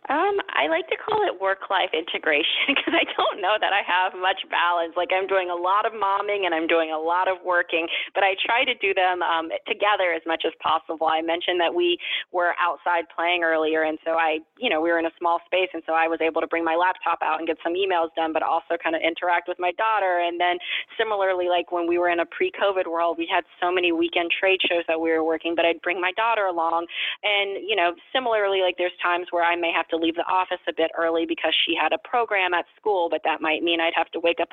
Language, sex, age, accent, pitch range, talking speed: English, female, 20-39, American, 160-185 Hz, 255 wpm